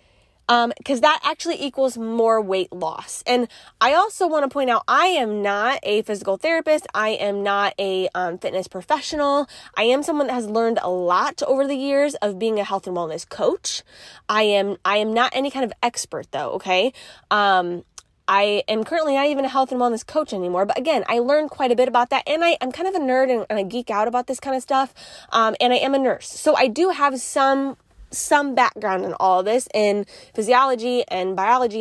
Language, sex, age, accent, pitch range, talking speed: English, female, 10-29, American, 205-275 Hz, 220 wpm